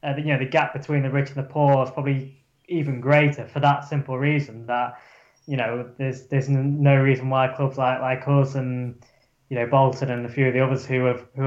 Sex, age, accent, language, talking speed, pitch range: male, 10-29, British, English, 230 wpm, 125-145 Hz